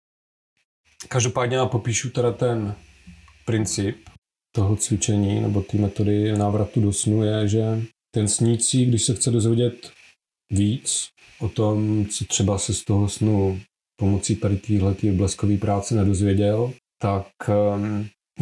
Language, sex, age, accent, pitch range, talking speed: Czech, male, 40-59, native, 100-115 Hz, 130 wpm